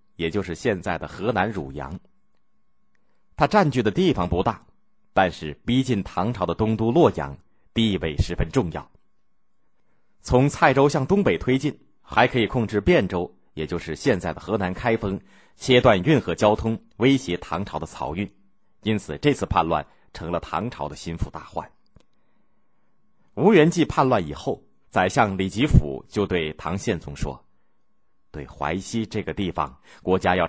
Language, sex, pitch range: Chinese, male, 85-125 Hz